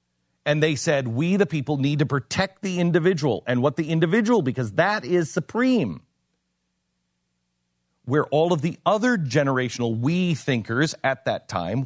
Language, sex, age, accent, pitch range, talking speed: English, male, 40-59, American, 120-175 Hz, 150 wpm